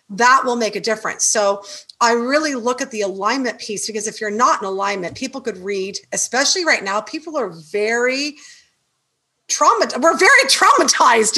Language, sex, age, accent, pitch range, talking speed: English, female, 40-59, American, 210-275 Hz, 170 wpm